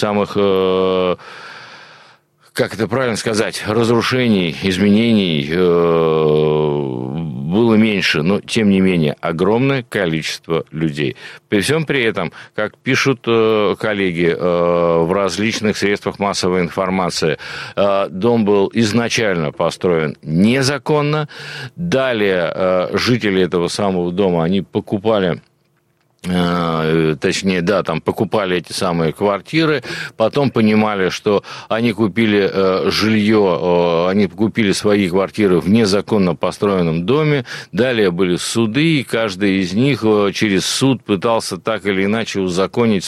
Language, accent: Russian, native